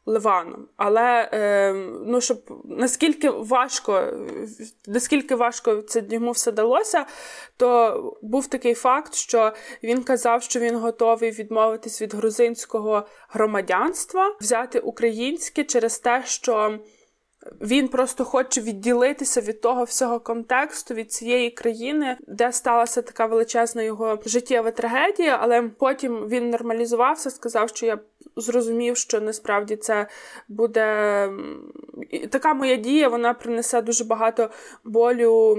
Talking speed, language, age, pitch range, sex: 120 wpm, Ukrainian, 20-39, 220-255 Hz, female